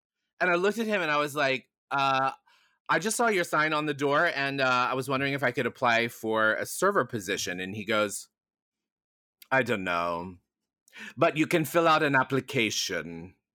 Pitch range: 115-150 Hz